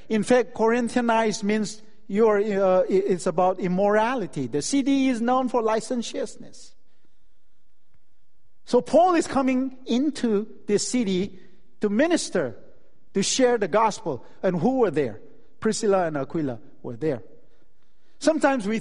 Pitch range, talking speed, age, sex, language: 170-240 Hz, 125 wpm, 50-69, male, English